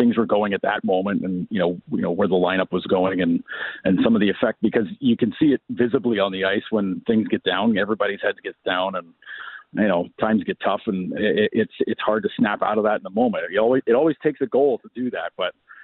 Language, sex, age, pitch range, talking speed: English, male, 40-59, 105-170 Hz, 260 wpm